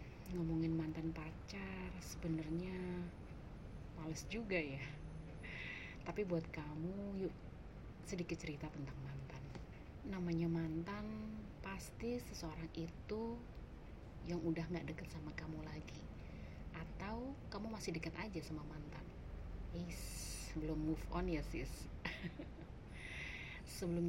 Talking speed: 100 wpm